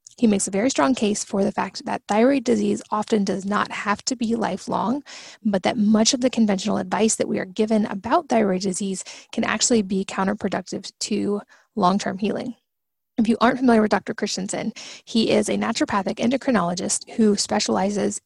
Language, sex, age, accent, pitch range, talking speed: English, female, 20-39, American, 200-230 Hz, 180 wpm